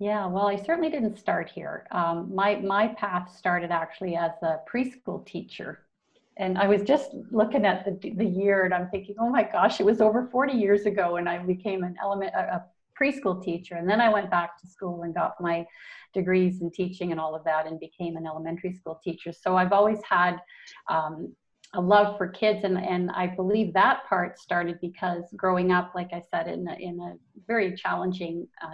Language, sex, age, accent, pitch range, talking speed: English, female, 40-59, American, 175-205 Hz, 210 wpm